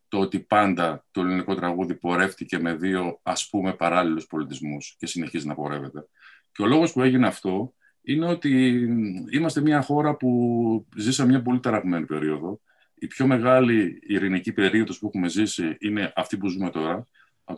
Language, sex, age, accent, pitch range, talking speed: Greek, male, 50-69, native, 90-135 Hz, 165 wpm